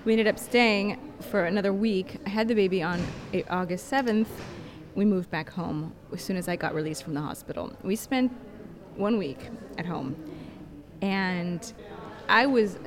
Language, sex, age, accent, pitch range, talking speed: English, female, 20-39, American, 175-225 Hz, 170 wpm